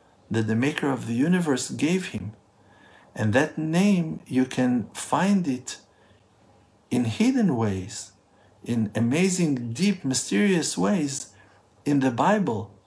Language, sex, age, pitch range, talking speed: English, male, 50-69, 105-135 Hz, 120 wpm